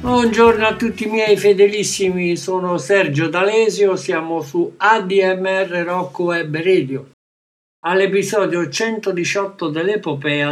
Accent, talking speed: native, 105 wpm